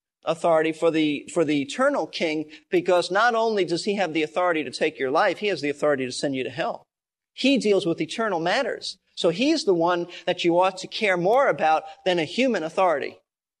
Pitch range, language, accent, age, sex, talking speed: 155-210 Hz, English, American, 40-59, male, 210 wpm